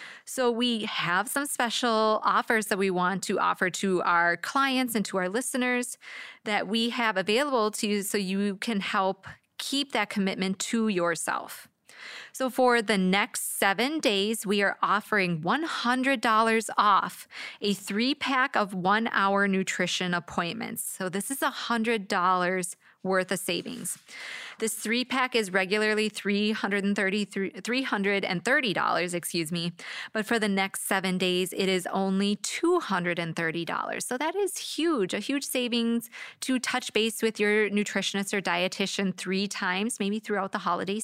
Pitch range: 195-245 Hz